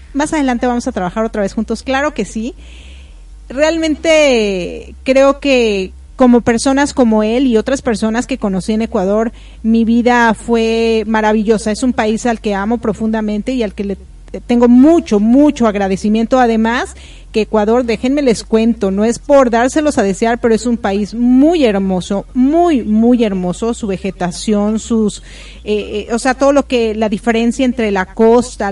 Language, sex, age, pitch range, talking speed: Spanish, female, 40-59, 215-260 Hz, 165 wpm